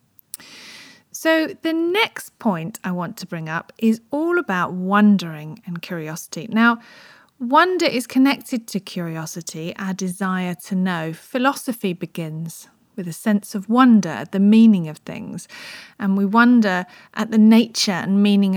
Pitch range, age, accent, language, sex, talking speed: 185-245 Hz, 40-59, British, English, female, 140 wpm